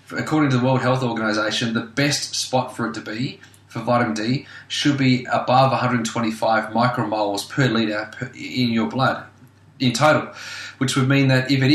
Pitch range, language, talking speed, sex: 105-130 Hz, English, 175 wpm, male